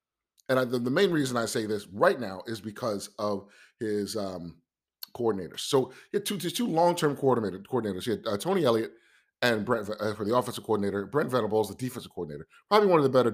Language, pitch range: English, 100-125 Hz